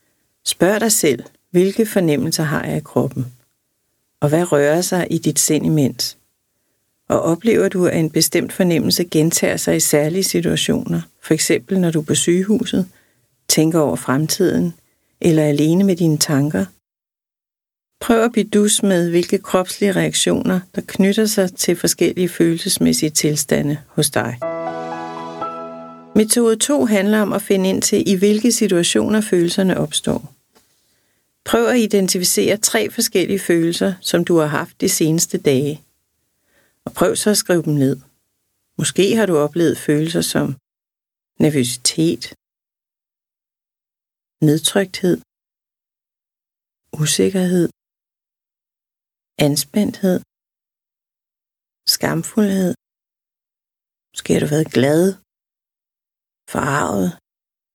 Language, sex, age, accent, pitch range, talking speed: Danish, female, 60-79, native, 145-195 Hz, 115 wpm